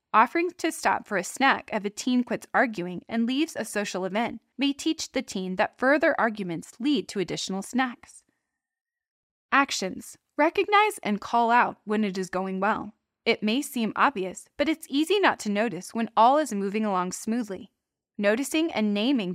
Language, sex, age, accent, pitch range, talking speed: English, female, 20-39, American, 200-280 Hz, 175 wpm